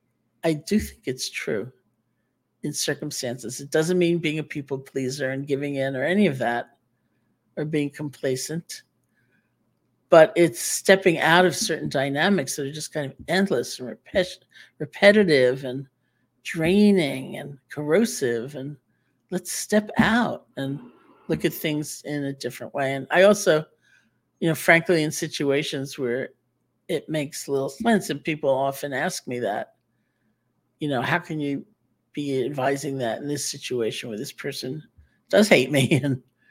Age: 50-69